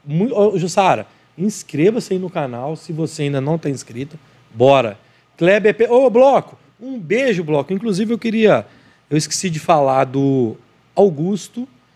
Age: 40-59